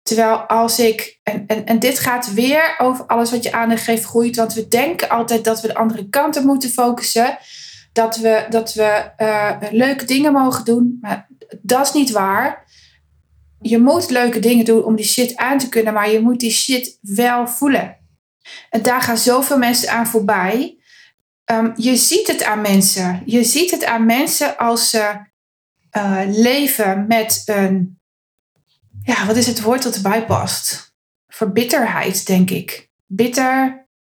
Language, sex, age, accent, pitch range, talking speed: Dutch, female, 20-39, Dutch, 215-255 Hz, 170 wpm